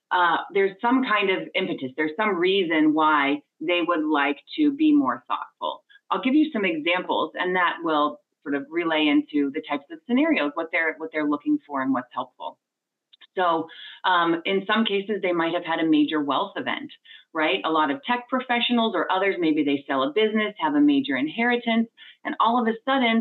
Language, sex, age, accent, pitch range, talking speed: English, female, 30-49, American, 155-255 Hz, 195 wpm